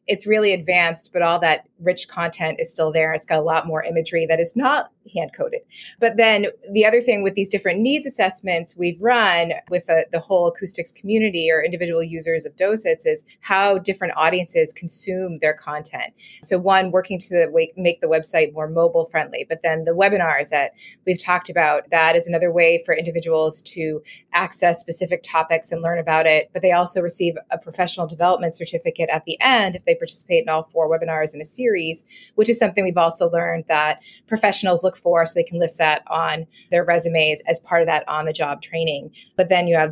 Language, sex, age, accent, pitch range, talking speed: English, female, 20-39, American, 165-195 Hz, 200 wpm